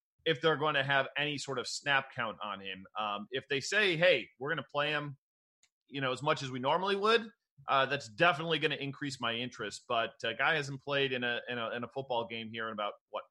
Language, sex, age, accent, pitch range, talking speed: English, male, 30-49, American, 130-165 Hz, 250 wpm